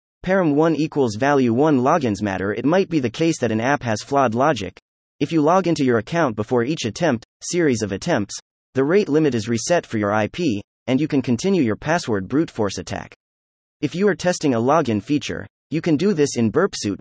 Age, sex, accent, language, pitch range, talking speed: 30-49, male, American, English, 110-160 Hz, 210 wpm